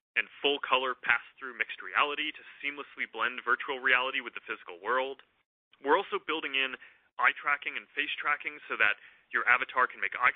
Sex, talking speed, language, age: male, 160 wpm, English, 30-49